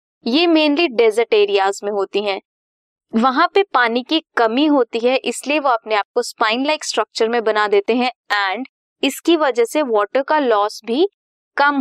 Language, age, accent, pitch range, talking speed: Hindi, 20-39, native, 220-320 Hz, 175 wpm